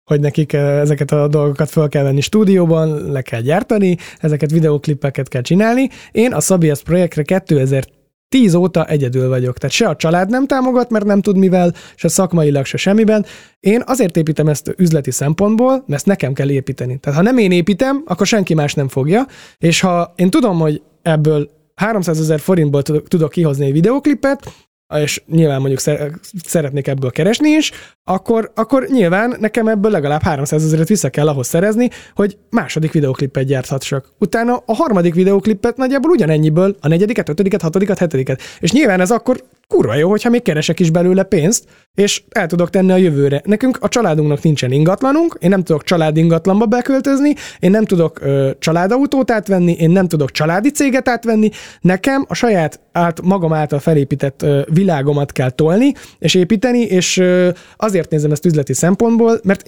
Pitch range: 150-215 Hz